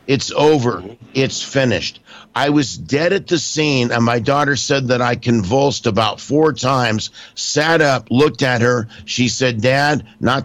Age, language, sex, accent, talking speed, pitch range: 50-69, English, male, American, 165 wpm, 120-145 Hz